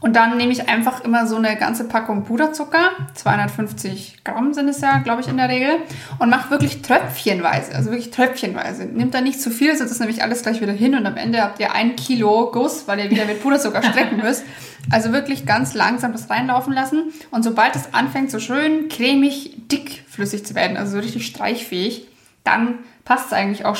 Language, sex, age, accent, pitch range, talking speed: German, female, 20-39, German, 210-270 Hz, 200 wpm